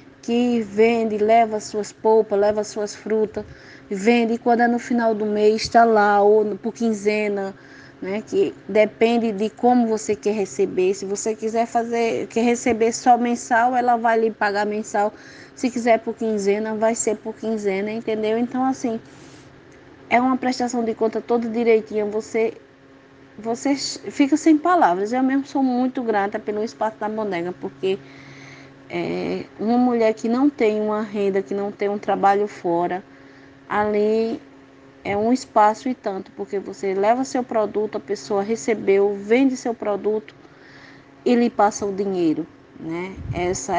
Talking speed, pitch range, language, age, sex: 150 wpm, 200-230 Hz, Portuguese, 20-39, female